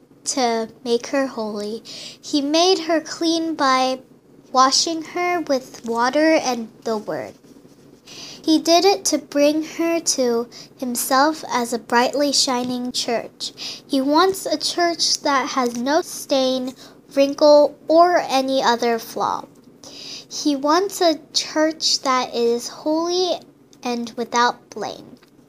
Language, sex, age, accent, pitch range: Korean, female, 10-29, American, 245-320 Hz